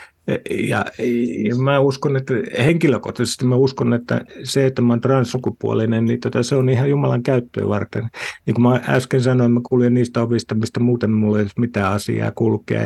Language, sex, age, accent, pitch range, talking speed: Finnish, male, 50-69, native, 105-130 Hz, 180 wpm